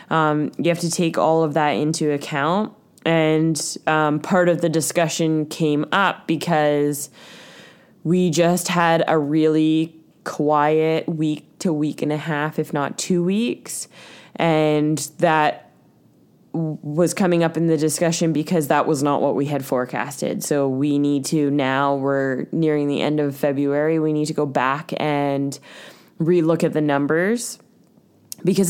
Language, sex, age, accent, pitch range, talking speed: English, female, 20-39, American, 145-170 Hz, 155 wpm